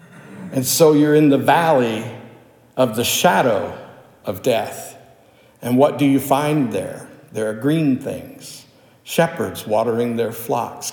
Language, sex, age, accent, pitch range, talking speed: English, male, 60-79, American, 120-150 Hz, 135 wpm